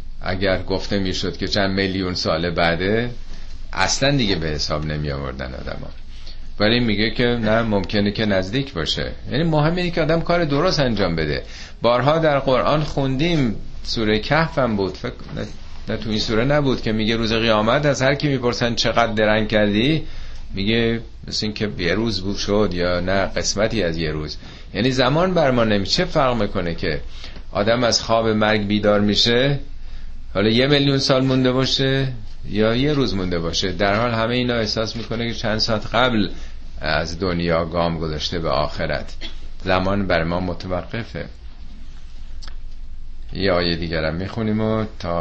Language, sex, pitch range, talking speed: Persian, male, 80-115 Hz, 160 wpm